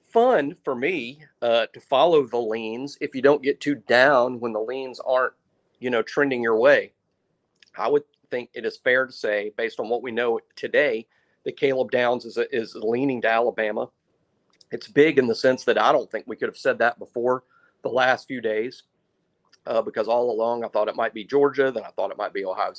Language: English